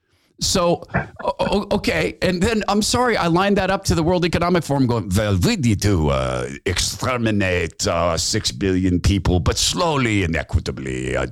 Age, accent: 50-69, American